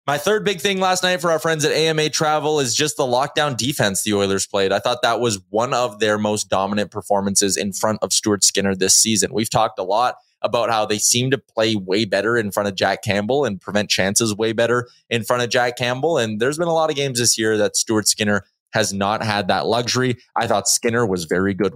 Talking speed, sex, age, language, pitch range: 240 wpm, male, 20-39, English, 100-130 Hz